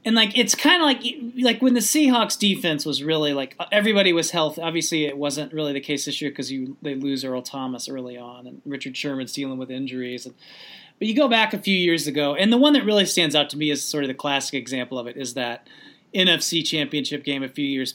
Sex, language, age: male, English, 30-49